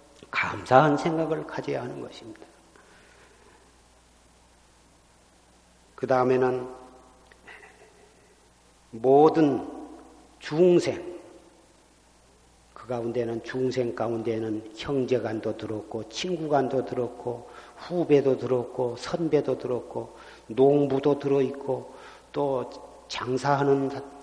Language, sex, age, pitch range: Korean, male, 40-59, 130-160 Hz